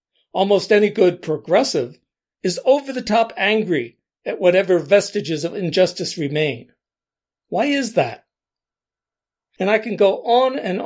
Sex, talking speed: male, 120 wpm